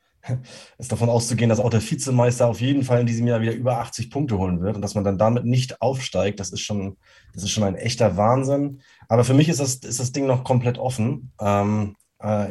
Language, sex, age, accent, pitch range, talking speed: German, male, 30-49, German, 105-120 Hz, 230 wpm